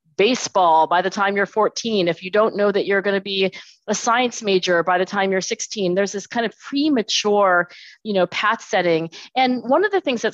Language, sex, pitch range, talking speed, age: English, female, 180-245 Hz, 220 wpm, 40-59